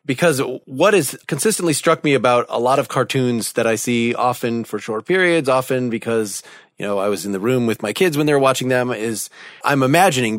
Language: English